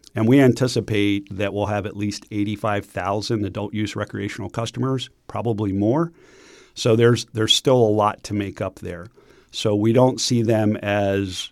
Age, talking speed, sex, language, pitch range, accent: 50-69, 155 wpm, male, English, 100-115 Hz, American